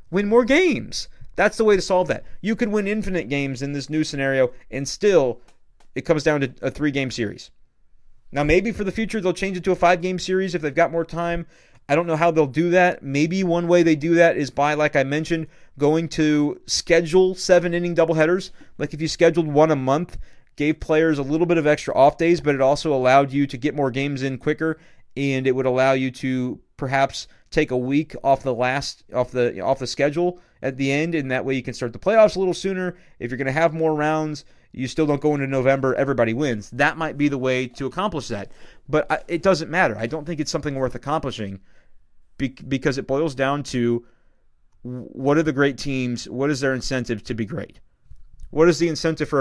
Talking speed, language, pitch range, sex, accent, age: 225 wpm, English, 130-170 Hz, male, American, 30-49